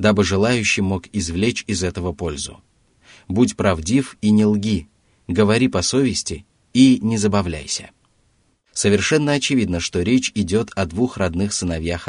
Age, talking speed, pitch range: 30-49, 135 wpm, 90-110 Hz